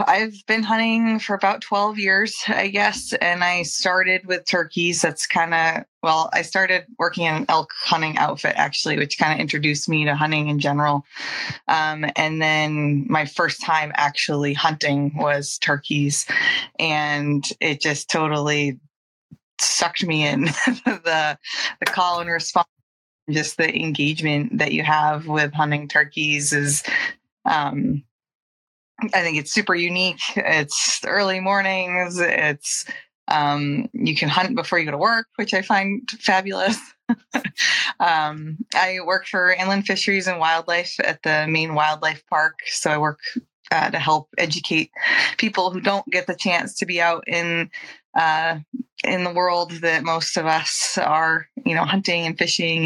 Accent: American